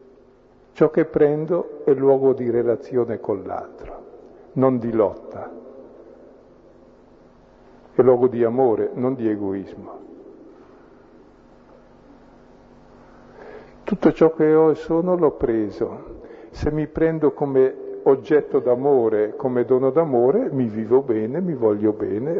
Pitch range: 115-155 Hz